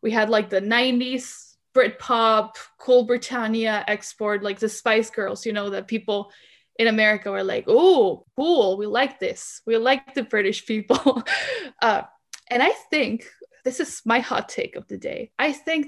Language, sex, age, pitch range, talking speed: English, female, 10-29, 210-245 Hz, 175 wpm